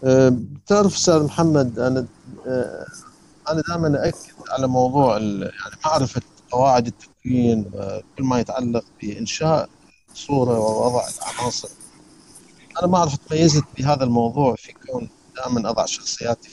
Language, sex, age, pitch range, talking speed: Arabic, male, 50-69, 120-150 Hz, 120 wpm